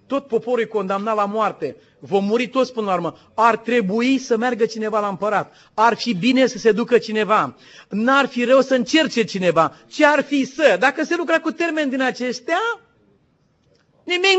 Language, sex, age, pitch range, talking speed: Romanian, male, 40-59, 205-275 Hz, 185 wpm